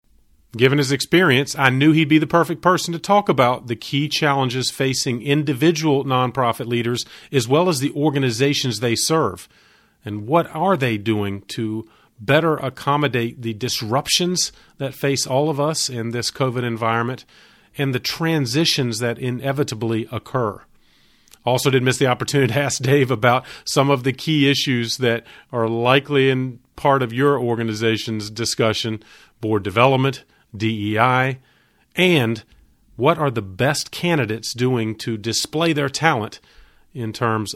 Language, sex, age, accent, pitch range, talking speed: English, male, 40-59, American, 115-140 Hz, 145 wpm